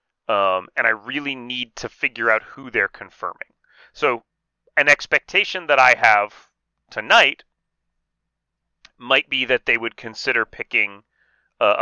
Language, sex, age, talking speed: English, male, 30-49, 130 wpm